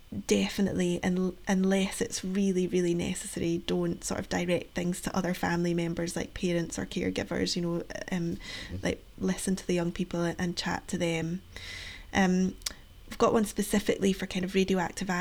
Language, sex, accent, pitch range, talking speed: English, female, British, 175-195 Hz, 160 wpm